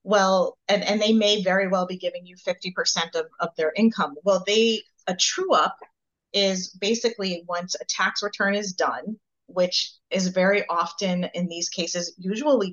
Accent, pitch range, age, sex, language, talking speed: American, 170-205 Hz, 30-49, female, English, 170 wpm